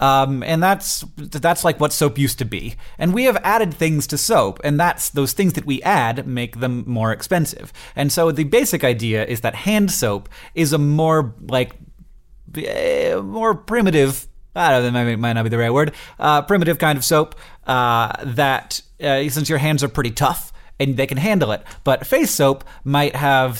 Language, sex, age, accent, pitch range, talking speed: English, male, 30-49, American, 115-155 Hz, 200 wpm